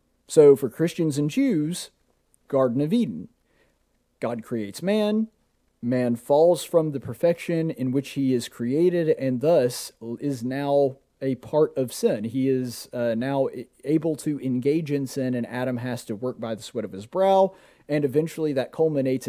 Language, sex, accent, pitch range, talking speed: English, male, American, 125-160 Hz, 165 wpm